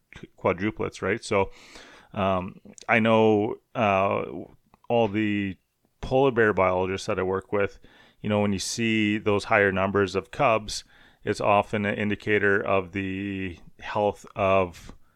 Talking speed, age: 135 wpm, 30-49